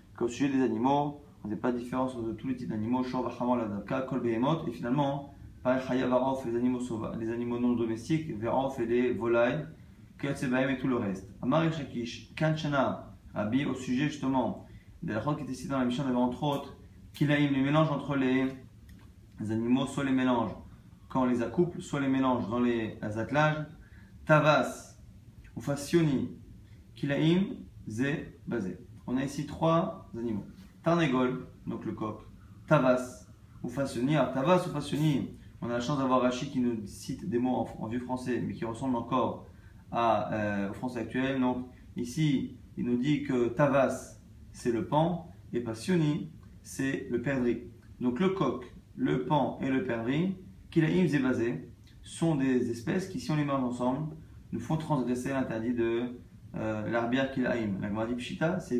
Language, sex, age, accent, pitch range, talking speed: French, male, 30-49, French, 115-140 Hz, 160 wpm